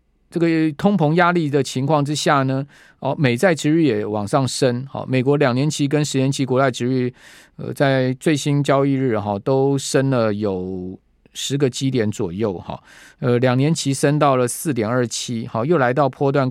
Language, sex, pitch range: Chinese, male, 115-140 Hz